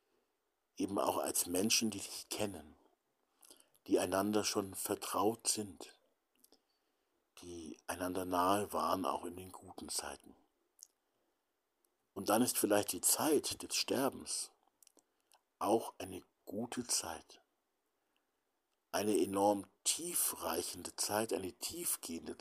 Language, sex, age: German, male, 60-79